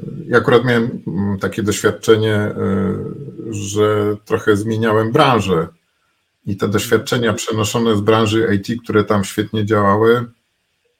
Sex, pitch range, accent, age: male, 100-115 Hz, native, 50-69